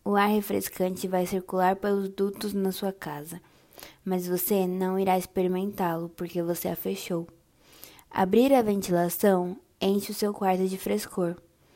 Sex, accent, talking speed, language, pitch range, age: female, Brazilian, 145 wpm, Portuguese, 180-215 Hz, 10-29